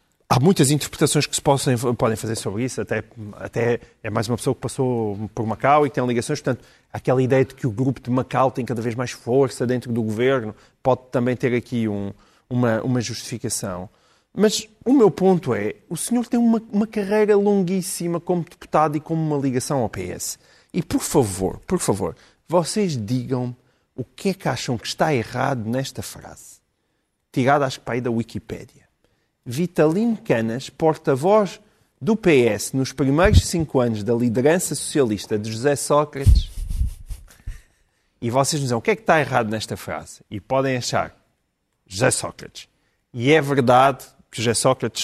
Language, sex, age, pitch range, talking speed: Portuguese, male, 30-49, 120-170 Hz, 170 wpm